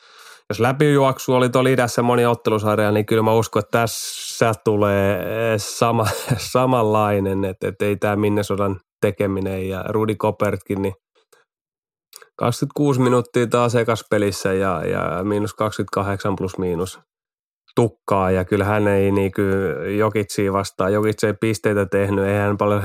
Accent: native